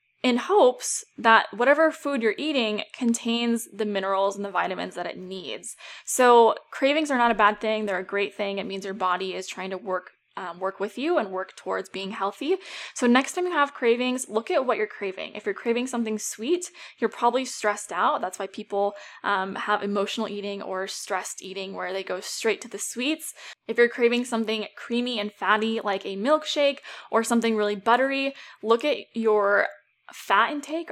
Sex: female